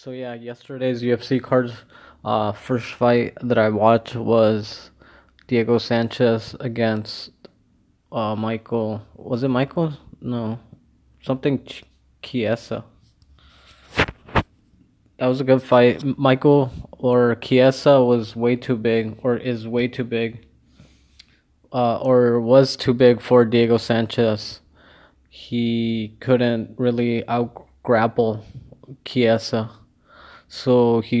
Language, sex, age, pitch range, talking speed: English, male, 20-39, 110-120 Hz, 110 wpm